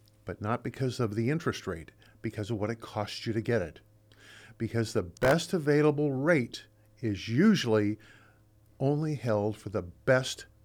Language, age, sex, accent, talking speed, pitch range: English, 50-69, male, American, 160 wpm, 105-130 Hz